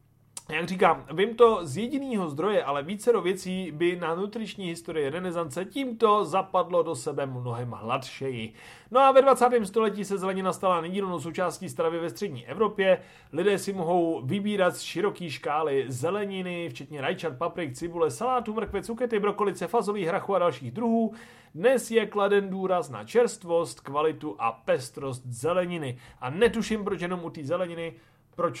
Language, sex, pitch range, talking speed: Czech, male, 140-210 Hz, 155 wpm